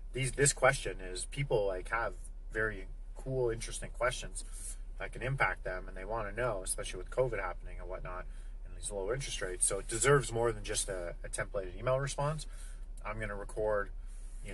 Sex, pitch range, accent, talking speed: male, 90-115 Hz, American, 195 wpm